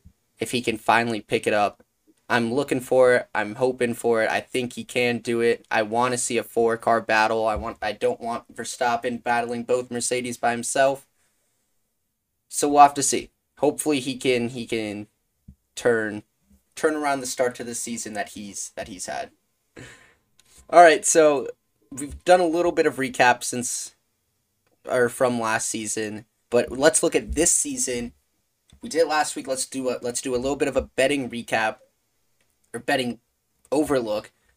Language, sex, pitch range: English, male, 115-135 Hz